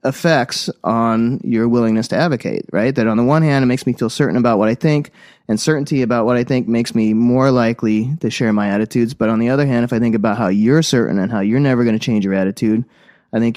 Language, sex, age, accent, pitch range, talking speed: English, male, 30-49, American, 110-130 Hz, 255 wpm